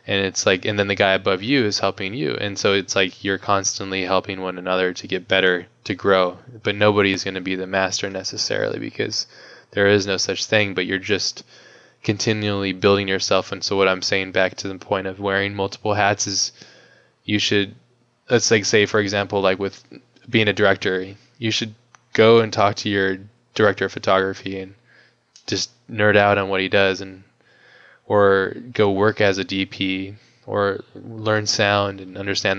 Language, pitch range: English, 95-105 Hz